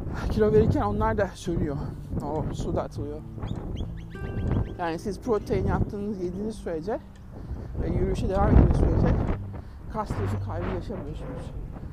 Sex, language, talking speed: male, Turkish, 115 wpm